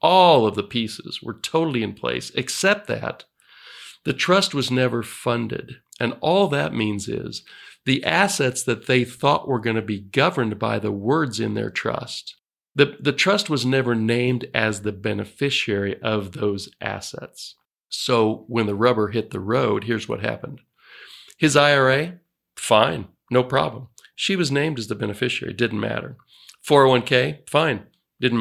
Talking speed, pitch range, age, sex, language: 155 wpm, 110-140 Hz, 50-69, male, English